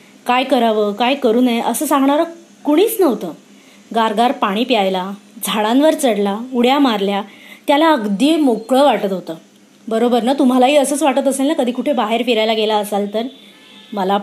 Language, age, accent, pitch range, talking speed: Marathi, 20-39, native, 215-275 Hz, 150 wpm